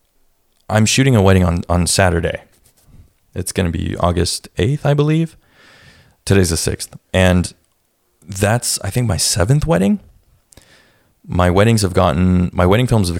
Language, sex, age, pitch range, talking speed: English, male, 20-39, 90-105 Hz, 150 wpm